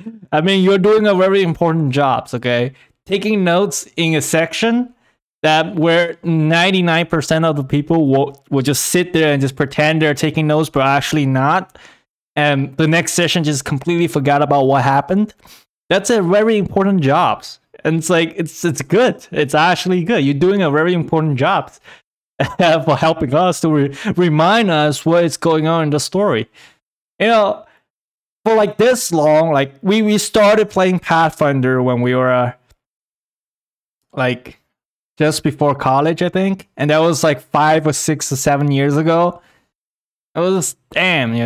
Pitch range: 140-180 Hz